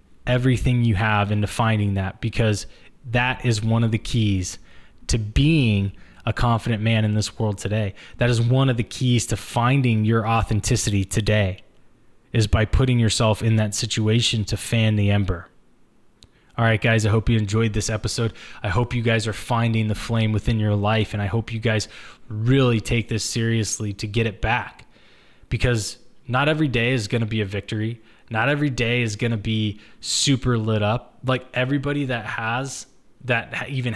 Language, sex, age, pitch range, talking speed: English, male, 20-39, 105-120 Hz, 180 wpm